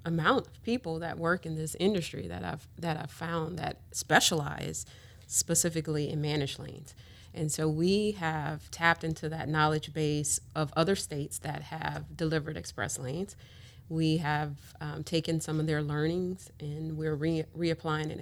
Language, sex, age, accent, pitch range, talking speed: English, female, 30-49, American, 140-165 Hz, 155 wpm